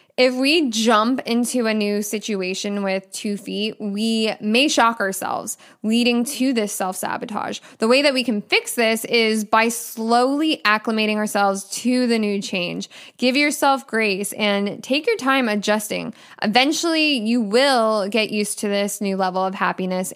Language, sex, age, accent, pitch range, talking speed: English, female, 10-29, American, 200-250 Hz, 160 wpm